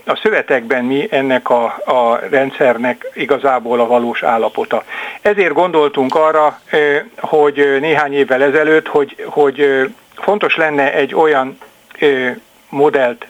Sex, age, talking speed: male, 60-79, 115 wpm